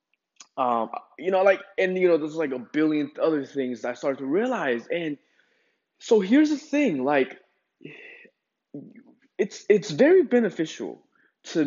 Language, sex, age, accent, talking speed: English, male, 20-39, American, 150 wpm